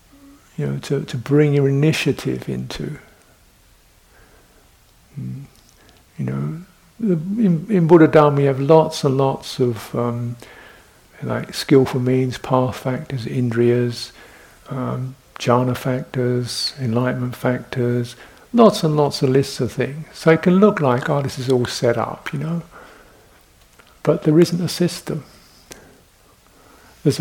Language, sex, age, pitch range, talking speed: English, male, 60-79, 125-160 Hz, 130 wpm